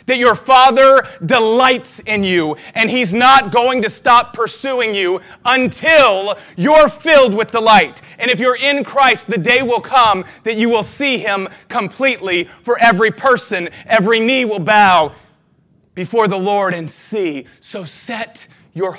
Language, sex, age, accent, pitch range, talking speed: English, male, 30-49, American, 175-230 Hz, 155 wpm